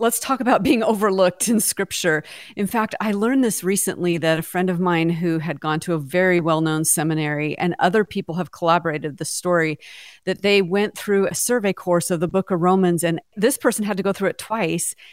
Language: English